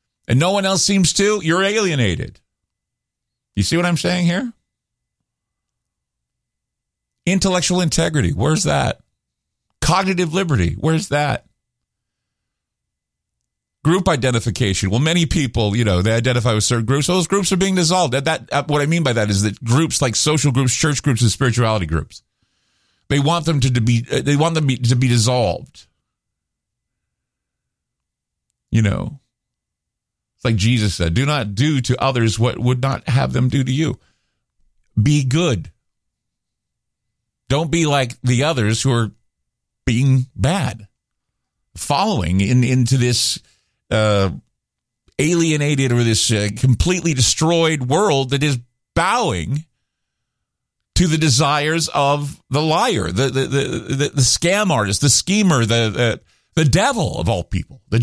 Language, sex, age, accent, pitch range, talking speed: English, male, 40-59, American, 115-160 Hz, 145 wpm